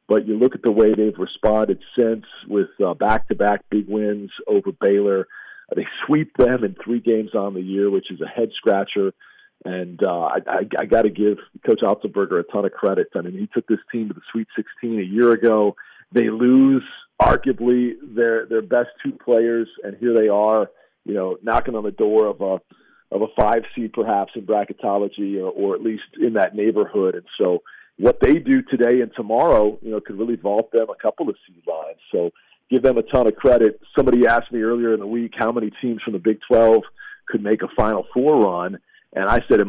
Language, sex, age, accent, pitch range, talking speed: English, male, 40-59, American, 105-150 Hz, 215 wpm